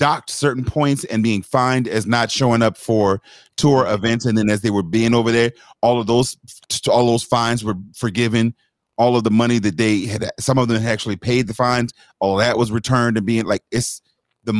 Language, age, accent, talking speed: English, 30-49, American, 220 wpm